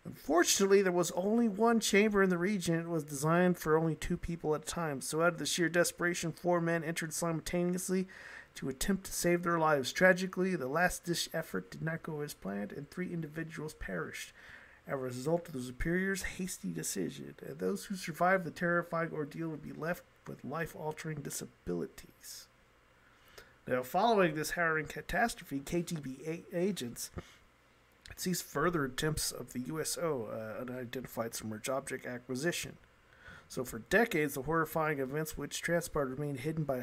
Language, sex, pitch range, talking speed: English, male, 145-175 Hz, 165 wpm